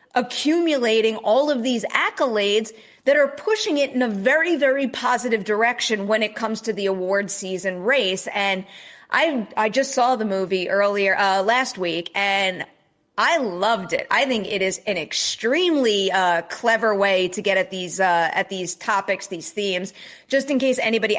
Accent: American